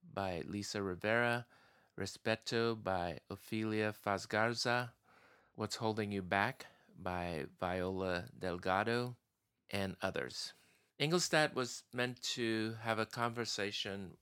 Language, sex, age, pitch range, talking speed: English, male, 30-49, 95-115 Hz, 95 wpm